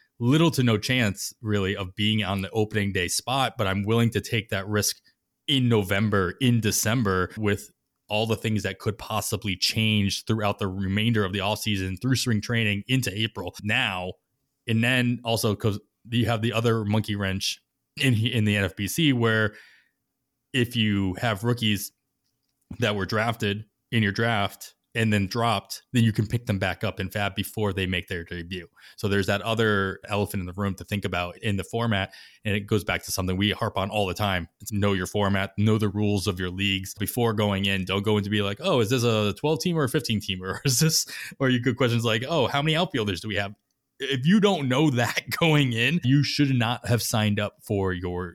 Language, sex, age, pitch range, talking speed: English, male, 20-39, 100-120 Hz, 210 wpm